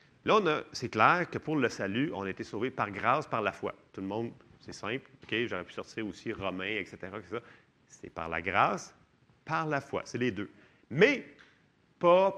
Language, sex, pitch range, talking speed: French, male, 120-165 Hz, 210 wpm